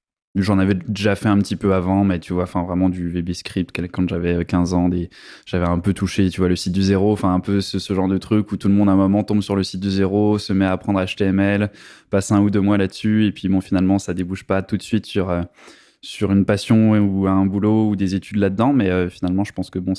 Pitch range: 90-100 Hz